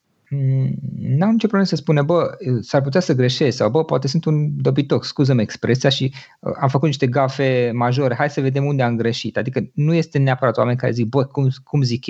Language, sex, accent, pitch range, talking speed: Romanian, male, native, 120-155 Hz, 205 wpm